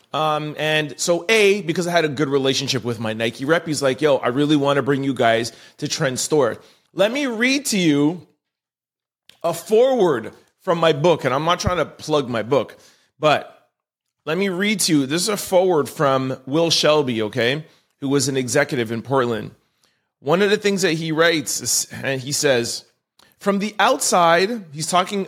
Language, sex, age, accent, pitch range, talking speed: English, male, 30-49, American, 140-185 Hz, 190 wpm